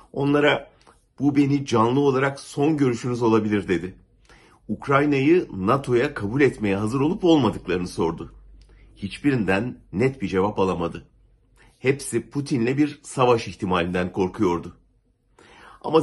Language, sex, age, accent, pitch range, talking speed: German, male, 60-79, Turkish, 100-135 Hz, 110 wpm